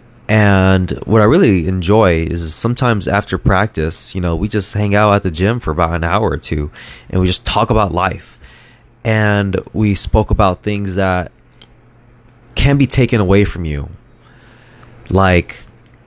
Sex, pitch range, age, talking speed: male, 90-120 Hz, 20-39, 160 wpm